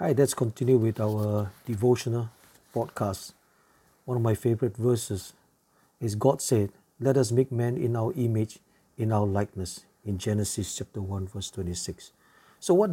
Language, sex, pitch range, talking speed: English, male, 110-145 Hz, 155 wpm